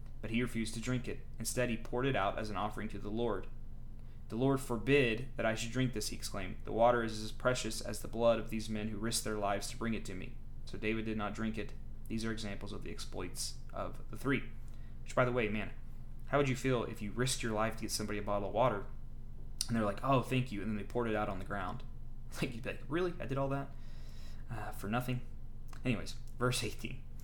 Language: English